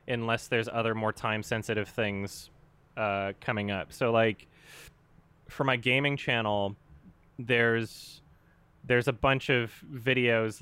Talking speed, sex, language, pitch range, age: 125 wpm, male, Hungarian, 100-120 Hz, 20-39